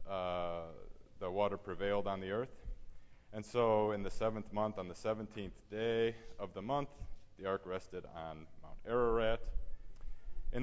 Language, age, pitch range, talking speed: English, 30-49, 85-110 Hz, 150 wpm